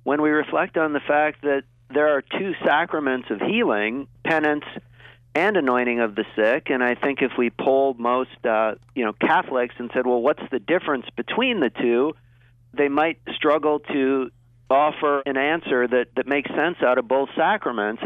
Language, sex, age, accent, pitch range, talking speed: English, male, 50-69, American, 125-150 Hz, 180 wpm